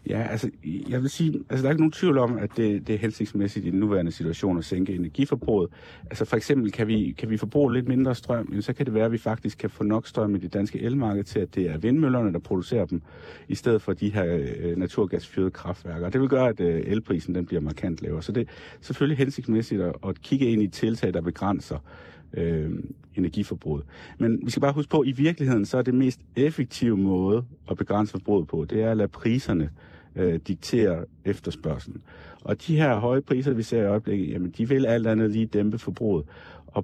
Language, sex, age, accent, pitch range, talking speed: Danish, male, 50-69, native, 90-120 Hz, 210 wpm